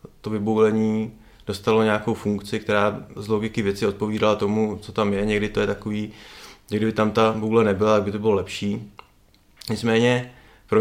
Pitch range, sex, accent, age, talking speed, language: 105-115 Hz, male, native, 20-39, 170 wpm, Czech